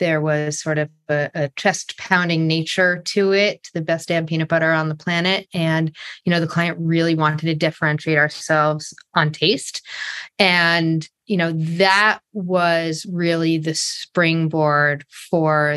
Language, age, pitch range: English, 30-49, 150-175 Hz